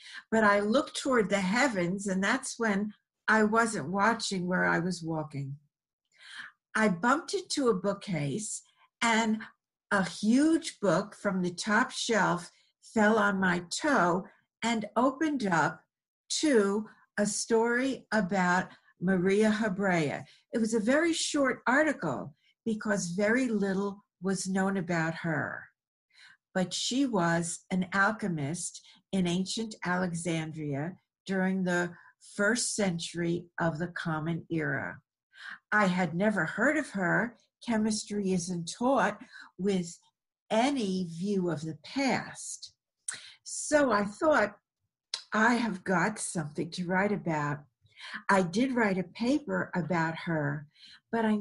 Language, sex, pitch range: English, female, 175-225 Hz